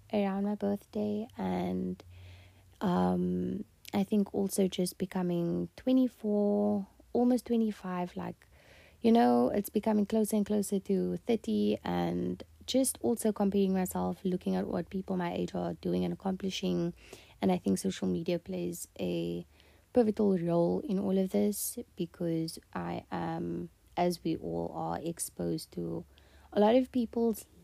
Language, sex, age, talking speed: English, female, 20-39, 140 wpm